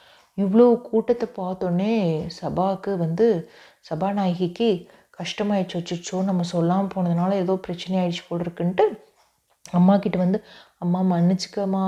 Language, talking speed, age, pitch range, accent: Tamil, 105 wpm, 30-49, 185-225 Hz, native